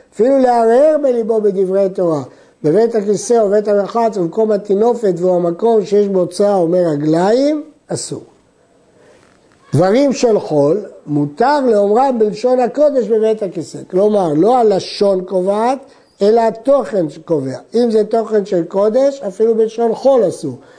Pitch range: 180-235 Hz